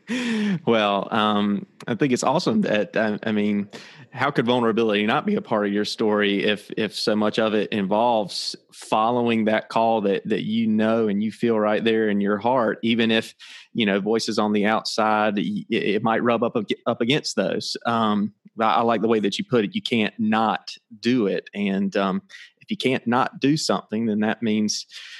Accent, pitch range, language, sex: American, 105-140 Hz, English, male